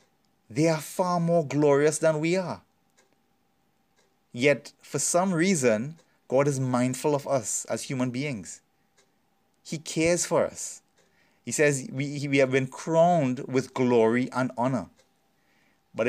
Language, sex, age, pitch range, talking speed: English, male, 30-49, 115-150 Hz, 135 wpm